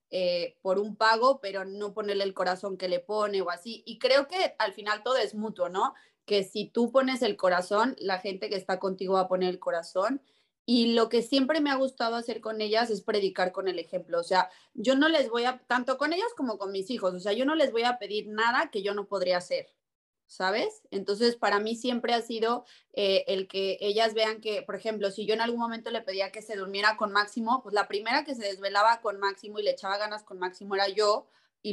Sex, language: female, Spanish